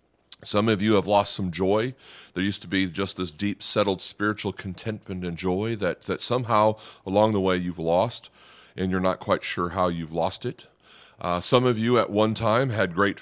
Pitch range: 90-110 Hz